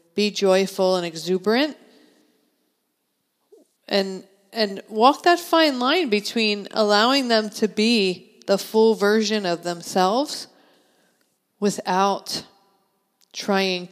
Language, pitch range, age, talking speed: English, 165-210 Hz, 40-59, 95 wpm